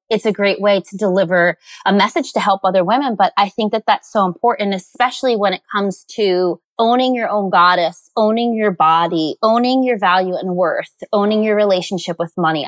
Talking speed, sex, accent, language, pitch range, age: 195 wpm, female, American, English, 180-225 Hz, 20-39